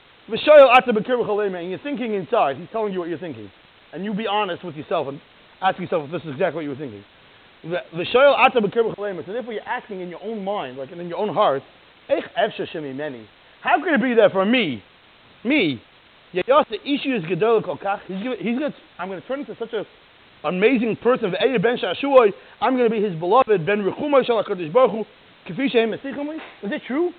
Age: 30-49